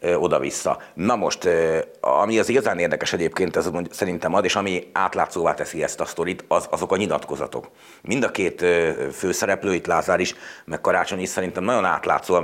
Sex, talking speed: male, 165 wpm